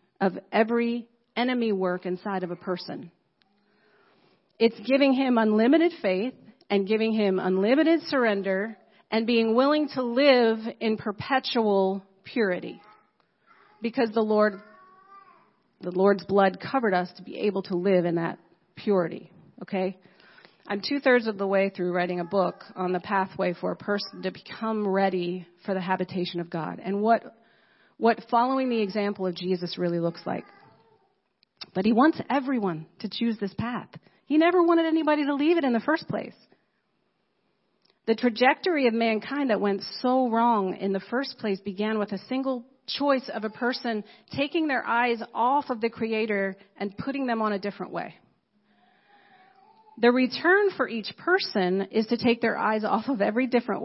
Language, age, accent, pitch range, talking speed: English, 40-59, American, 190-245 Hz, 160 wpm